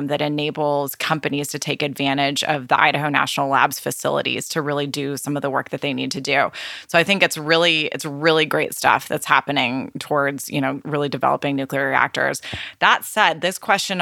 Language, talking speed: English, 195 wpm